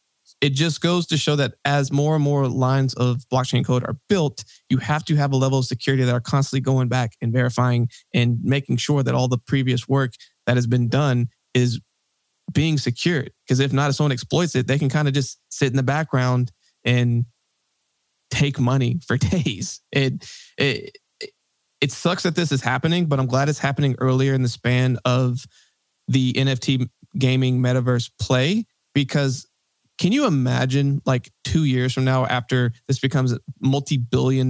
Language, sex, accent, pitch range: English, male, American, 125-140 Hz